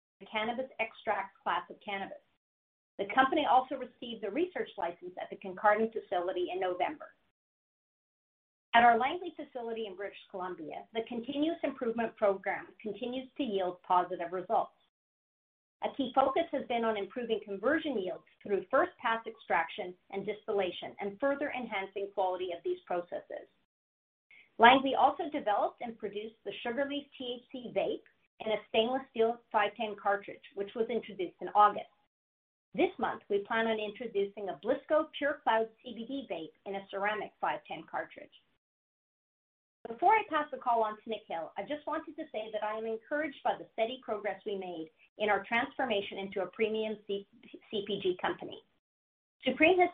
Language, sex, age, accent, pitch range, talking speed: English, female, 40-59, American, 200-260 Hz, 155 wpm